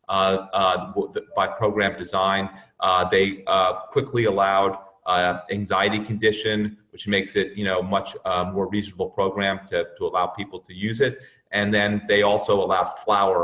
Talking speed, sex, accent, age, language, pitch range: 160 wpm, male, American, 40-59, English, 95-115 Hz